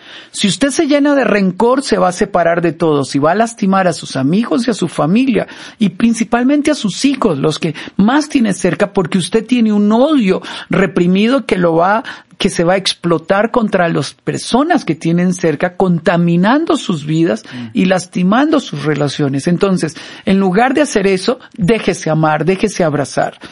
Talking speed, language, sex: 180 wpm, Spanish, male